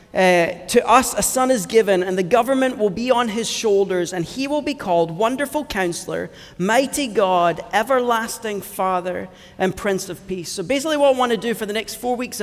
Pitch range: 190-240 Hz